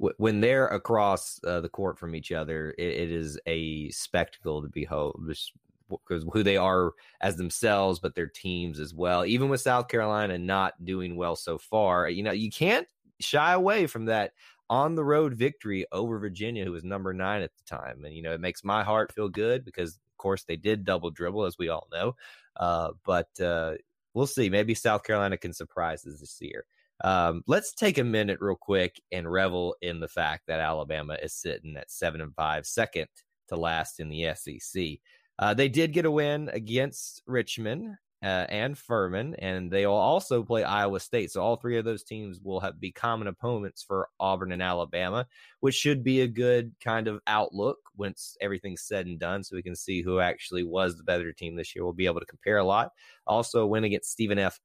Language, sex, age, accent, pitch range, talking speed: English, male, 20-39, American, 90-120 Hz, 205 wpm